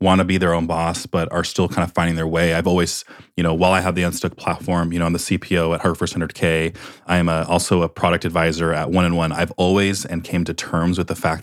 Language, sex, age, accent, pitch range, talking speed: English, male, 30-49, American, 85-100 Hz, 280 wpm